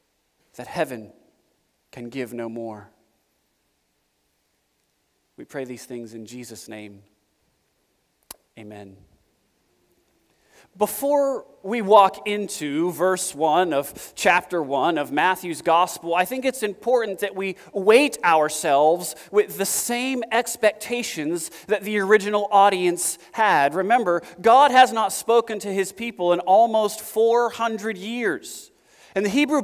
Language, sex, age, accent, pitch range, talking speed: English, male, 30-49, American, 175-250 Hz, 115 wpm